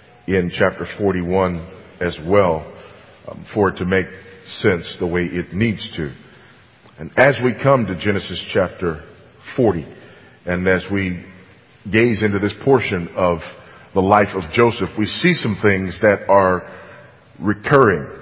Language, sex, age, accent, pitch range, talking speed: English, male, 40-59, American, 100-125 Hz, 140 wpm